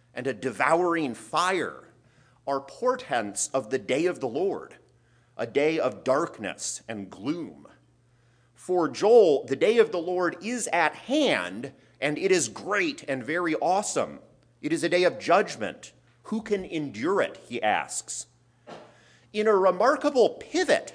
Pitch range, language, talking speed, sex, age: 130-210 Hz, English, 145 wpm, male, 40-59